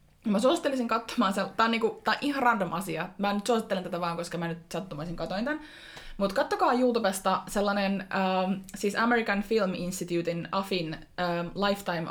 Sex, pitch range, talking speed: female, 180-215 Hz, 170 wpm